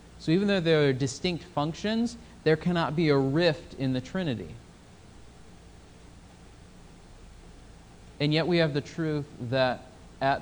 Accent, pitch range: American, 120-145 Hz